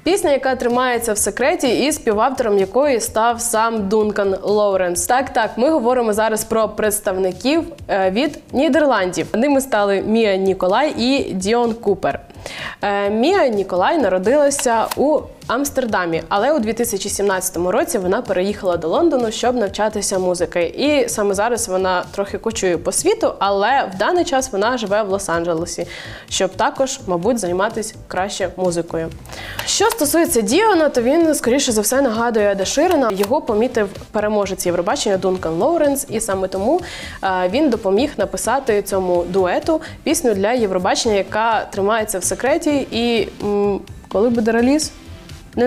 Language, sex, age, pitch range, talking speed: Ukrainian, female, 20-39, 190-260 Hz, 135 wpm